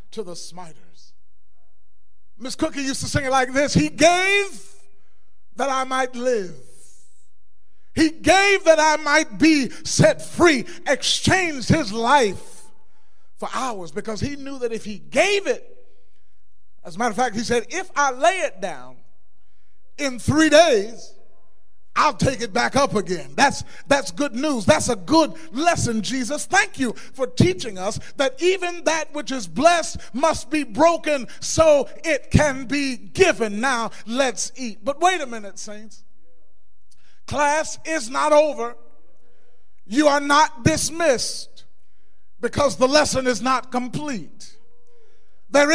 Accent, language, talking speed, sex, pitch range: American, English, 145 wpm, male, 215-315 Hz